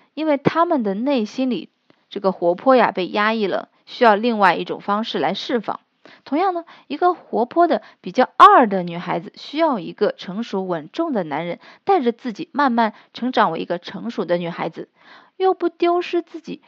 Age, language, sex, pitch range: 20-39, Chinese, female, 200-295 Hz